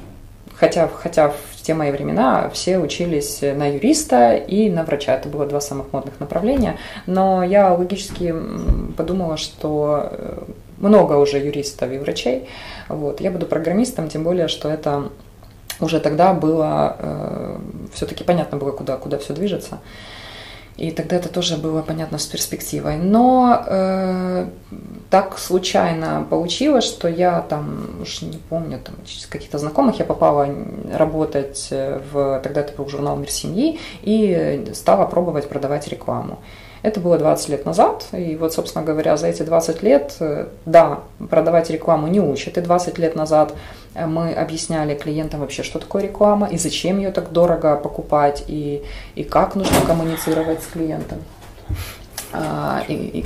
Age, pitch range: 20-39, 140-175 Hz